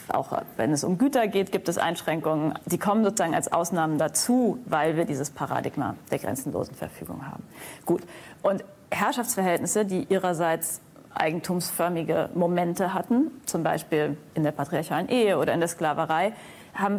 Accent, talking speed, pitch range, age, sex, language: German, 150 wpm, 175-225 Hz, 30-49, female, German